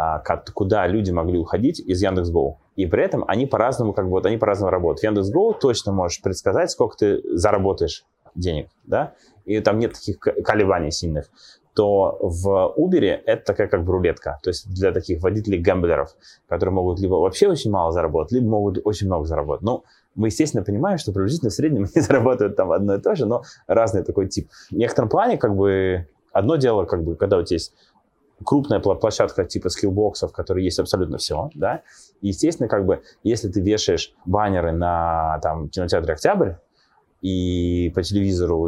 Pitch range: 85-105 Hz